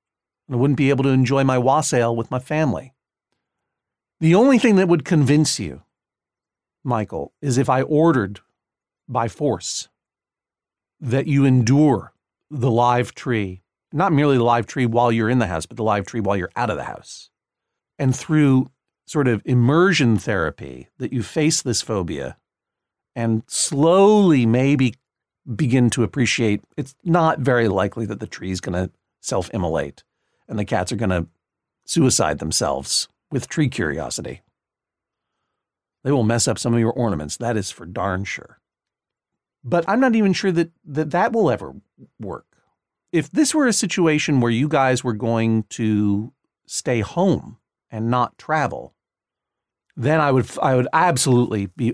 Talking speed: 155 wpm